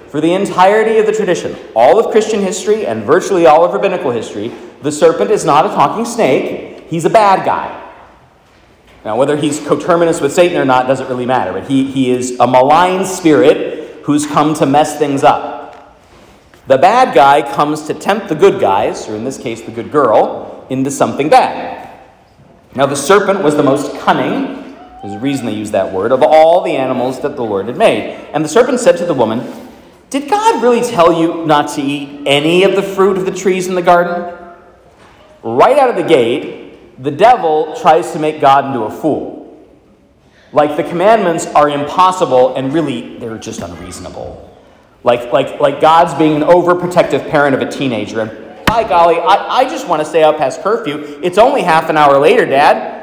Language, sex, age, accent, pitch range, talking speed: English, male, 40-59, American, 140-185 Hz, 195 wpm